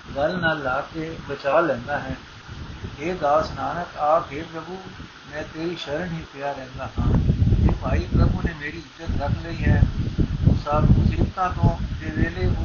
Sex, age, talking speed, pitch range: male, 60-79, 150 wpm, 130-180 Hz